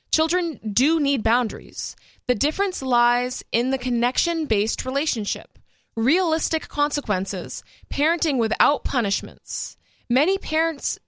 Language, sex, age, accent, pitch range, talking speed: English, female, 20-39, American, 215-295 Hz, 95 wpm